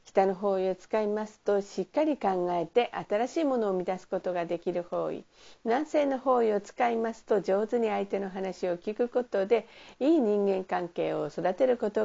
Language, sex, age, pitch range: Japanese, female, 50-69, 185-245 Hz